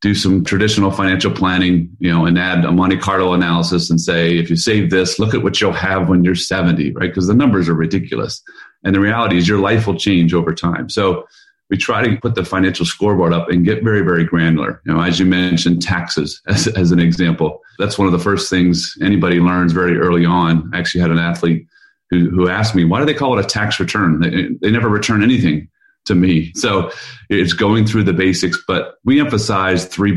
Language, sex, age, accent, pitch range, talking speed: English, male, 30-49, American, 85-105 Hz, 225 wpm